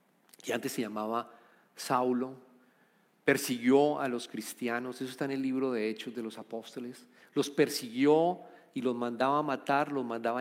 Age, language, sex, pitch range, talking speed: 40-59, Italian, male, 120-165 Hz, 160 wpm